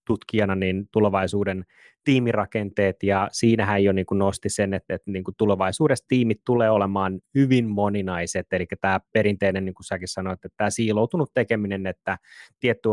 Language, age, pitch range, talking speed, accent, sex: Finnish, 20-39, 100-120 Hz, 145 wpm, native, male